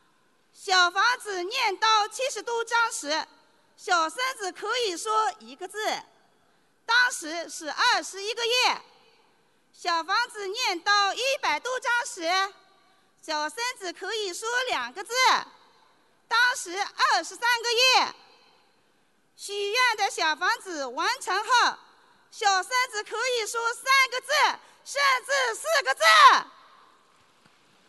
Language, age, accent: Chinese, 40-59, native